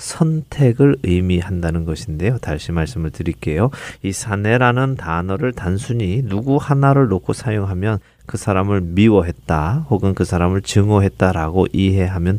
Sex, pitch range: male, 95-125 Hz